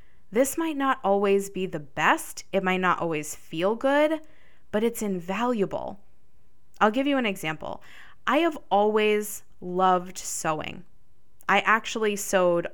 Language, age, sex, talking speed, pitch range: English, 20-39, female, 135 wpm, 185-230 Hz